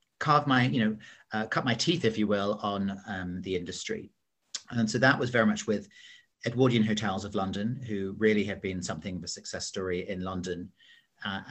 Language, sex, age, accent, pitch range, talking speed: English, male, 40-59, British, 95-115 Hz, 200 wpm